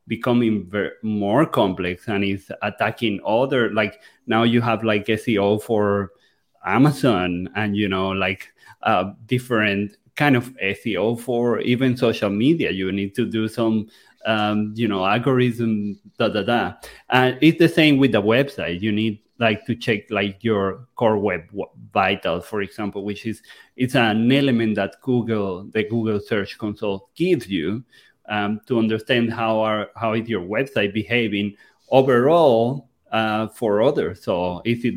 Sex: male